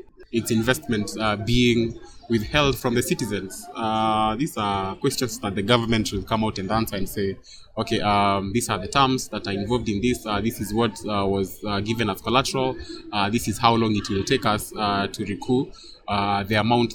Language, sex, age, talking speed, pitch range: English, male, 20-39, 205 wpm, 100-120 Hz